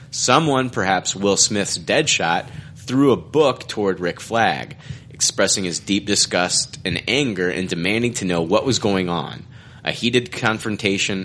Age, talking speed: 30-49, 155 wpm